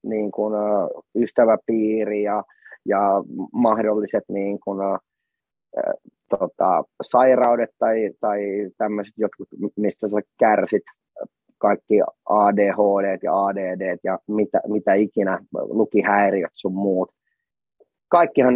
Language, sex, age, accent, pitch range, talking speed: Finnish, male, 30-49, native, 100-115 Hz, 95 wpm